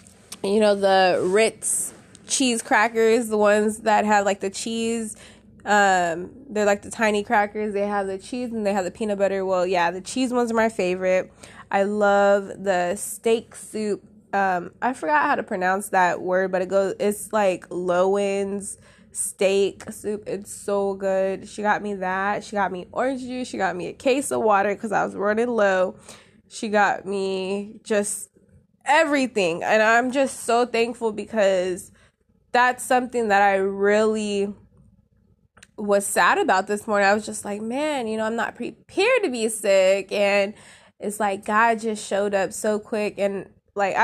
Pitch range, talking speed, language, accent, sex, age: 195-225 Hz, 175 wpm, English, American, female, 20-39